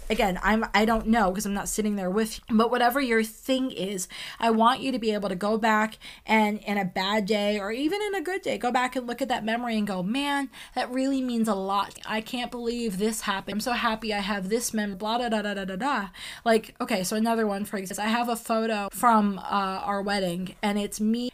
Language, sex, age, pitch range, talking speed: English, female, 20-39, 205-235 Hz, 240 wpm